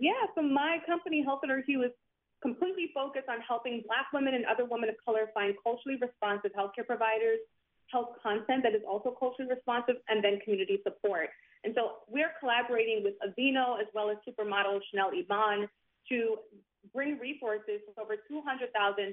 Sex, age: female, 30-49